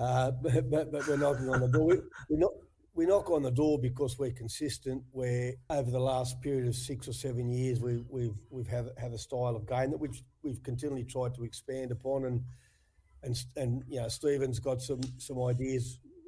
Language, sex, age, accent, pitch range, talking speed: English, male, 50-69, Australian, 120-130 Hz, 210 wpm